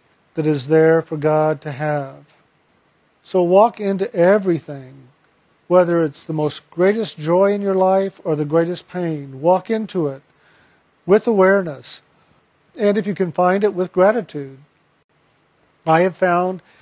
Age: 50-69